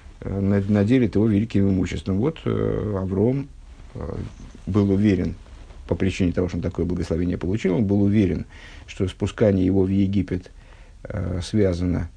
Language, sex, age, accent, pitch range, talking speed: Russian, male, 50-69, native, 90-110 Hz, 140 wpm